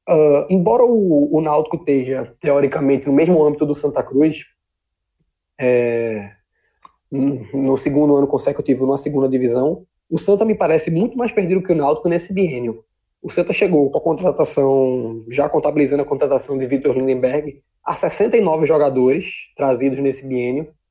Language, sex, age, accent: Portuguese, male, 20-39, Brazilian